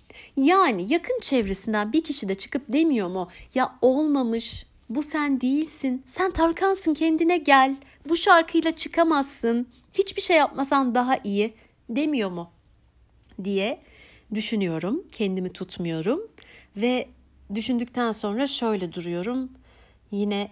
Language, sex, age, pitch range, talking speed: Turkish, female, 60-79, 190-280 Hz, 110 wpm